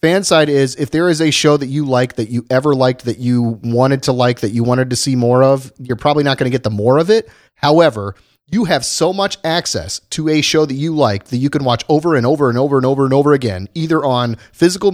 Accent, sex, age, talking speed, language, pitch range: American, male, 30-49, 265 wpm, English, 125-155 Hz